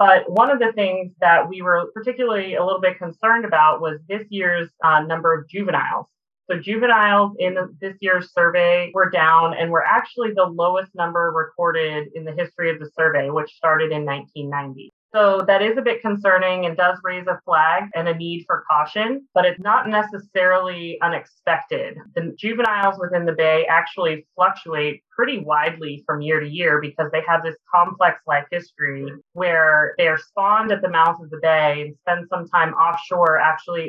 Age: 30-49